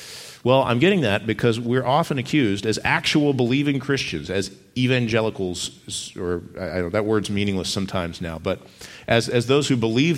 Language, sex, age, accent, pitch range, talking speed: English, male, 40-59, American, 105-140 Hz, 155 wpm